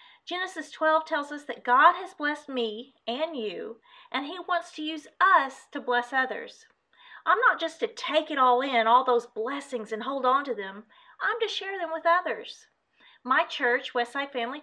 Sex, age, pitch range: female, 40-59, 230-355 Hz